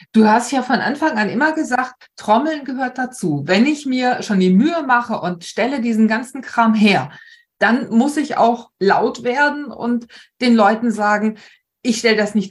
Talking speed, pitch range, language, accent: 180 wpm, 195-250 Hz, German, German